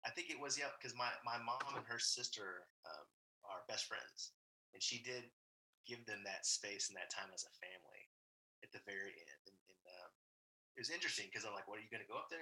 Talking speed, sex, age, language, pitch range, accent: 245 wpm, male, 30-49, English, 100-130 Hz, American